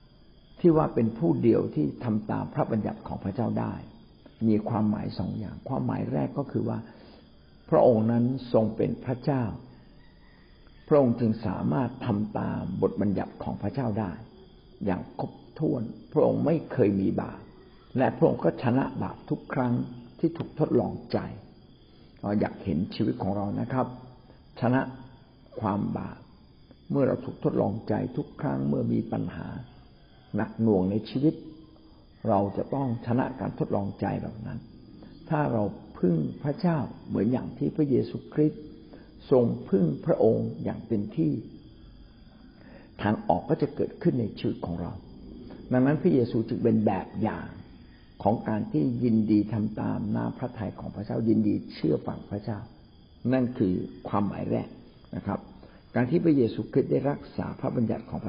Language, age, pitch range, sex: Thai, 60-79, 105-130 Hz, male